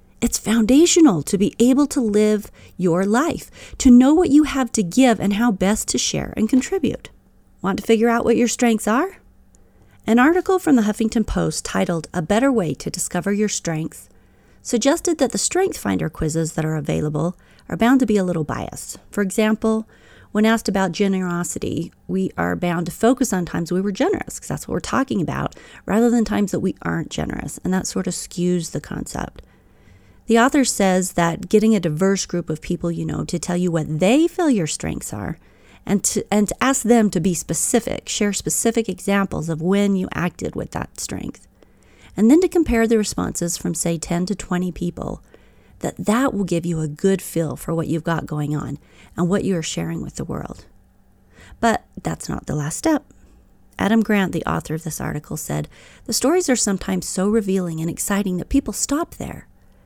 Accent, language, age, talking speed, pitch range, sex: American, English, 40-59, 195 wpm, 170-230 Hz, female